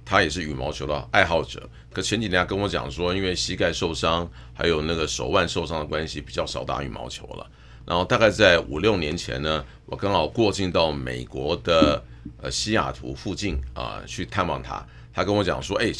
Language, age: Chinese, 50-69